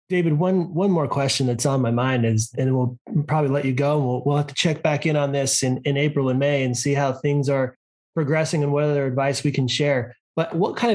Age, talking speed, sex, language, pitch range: 30-49, 250 wpm, male, English, 115-145 Hz